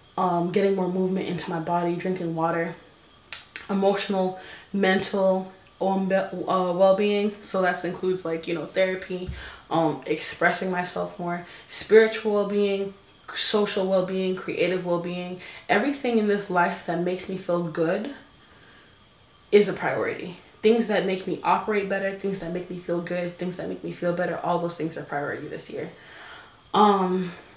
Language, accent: English, American